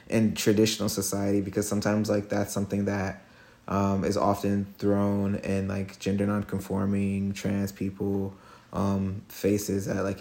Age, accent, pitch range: 30-49, American, 95-105 Hz